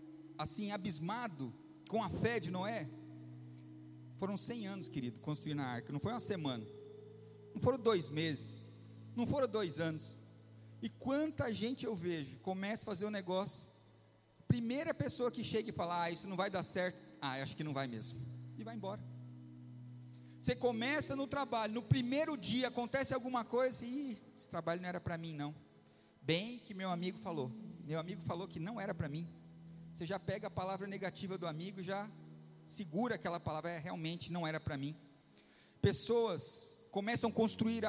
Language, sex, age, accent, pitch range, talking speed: Portuguese, male, 40-59, Brazilian, 130-205 Hz, 175 wpm